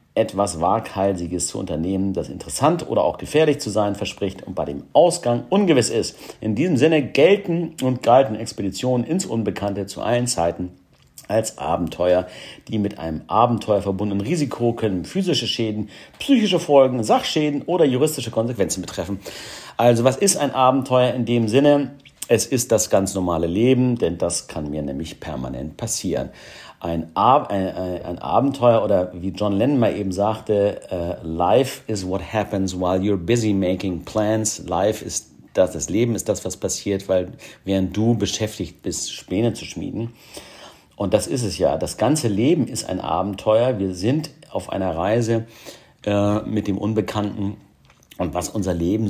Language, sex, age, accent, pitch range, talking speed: German, male, 50-69, German, 95-120 Hz, 160 wpm